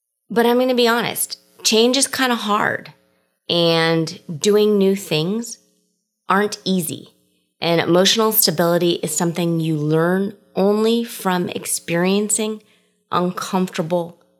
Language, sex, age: English, female, 20-39